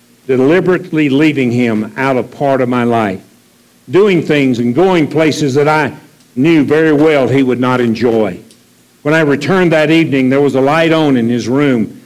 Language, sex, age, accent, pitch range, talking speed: English, male, 60-79, American, 115-165 Hz, 180 wpm